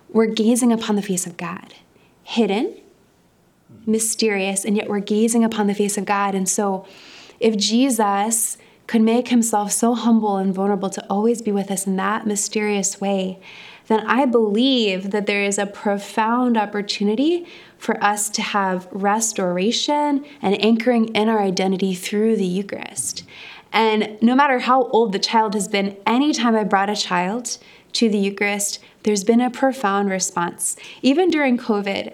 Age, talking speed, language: 20-39, 160 wpm, English